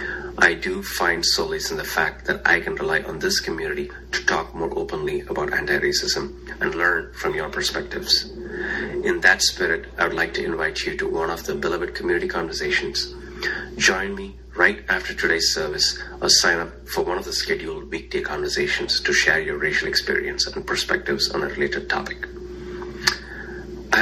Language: English